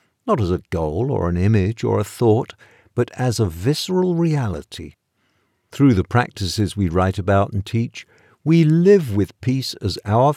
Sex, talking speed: male, 170 wpm